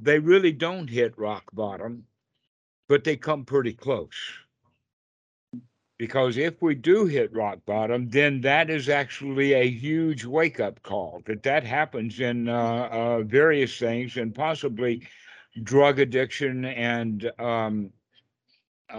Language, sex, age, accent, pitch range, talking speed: English, male, 60-79, American, 115-135 Hz, 130 wpm